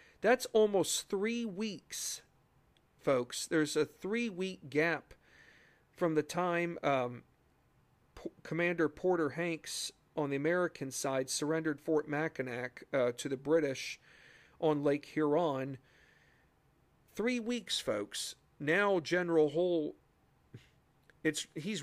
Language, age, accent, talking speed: English, 40-59, American, 100 wpm